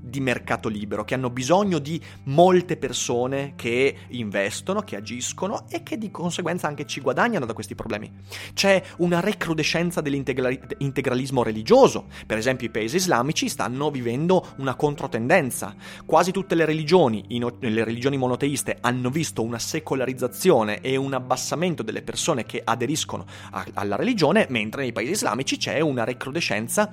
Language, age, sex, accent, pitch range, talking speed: Italian, 30-49, male, native, 115-165 Hz, 150 wpm